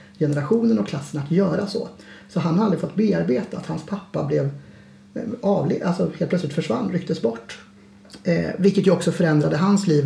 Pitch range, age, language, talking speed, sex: 150-190 Hz, 30-49, Swedish, 180 wpm, male